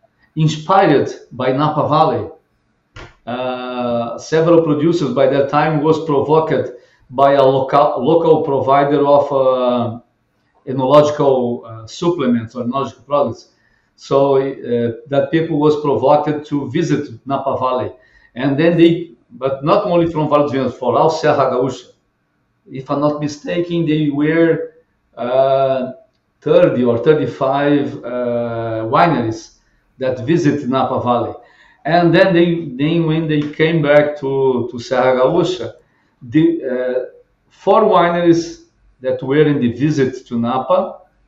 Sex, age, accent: male, 50-69, Brazilian